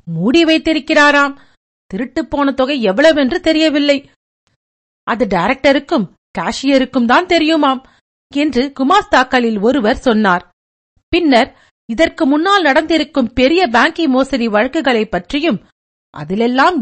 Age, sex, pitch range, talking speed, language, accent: 50-69, female, 230-305 Hz, 95 wpm, Tamil, native